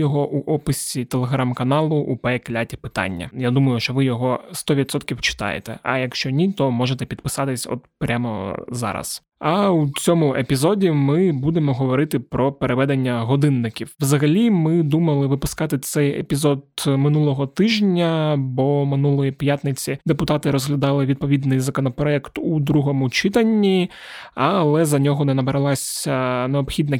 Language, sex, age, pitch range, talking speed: Ukrainian, male, 20-39, 135-155 Hz, 125 wpm